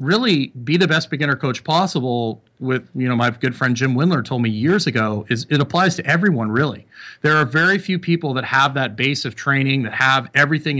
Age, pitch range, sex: 40-59, 120-145 Hz, male